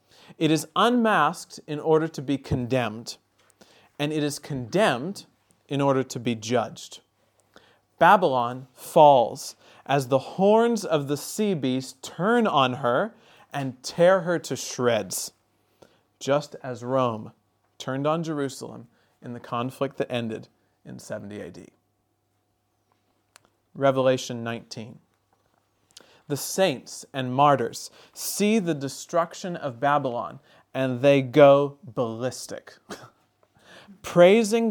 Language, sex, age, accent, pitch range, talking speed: English, male, 40-59, American, 125-165 Hz, 110 wpm